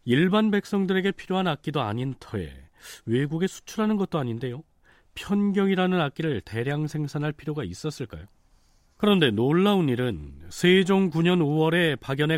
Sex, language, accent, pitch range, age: male, Korean, native, 120-175 Hz, 40-59